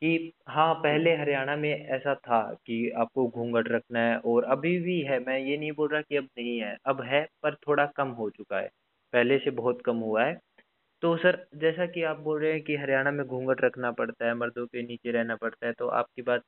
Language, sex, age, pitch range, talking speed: Hindi, male, 20-39, 115-145 Hz, 230 wpm